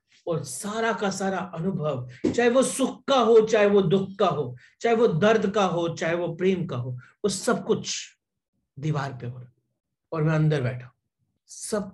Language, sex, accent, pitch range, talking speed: English, male, Indian, 130-205 Hz, 180 wpm